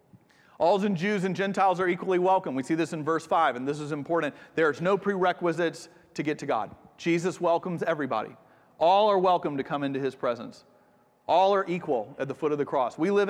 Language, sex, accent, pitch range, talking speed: English, male, American, 125-165 Hz, 215 wpm